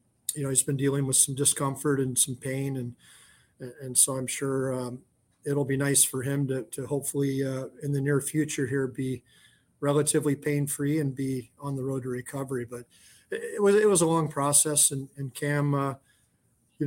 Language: English